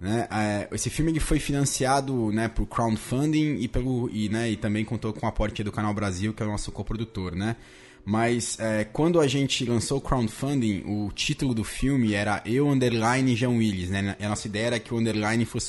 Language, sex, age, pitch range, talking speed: Portuguese, male, 20-39, 110-140 Hz, 205 wpm